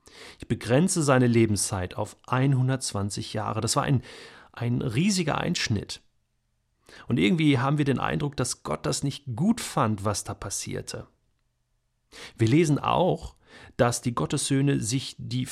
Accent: German